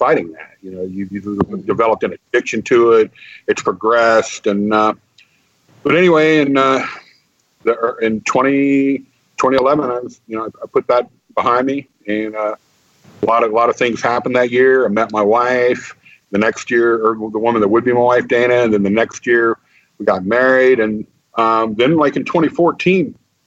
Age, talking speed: 50-69, 190 wpm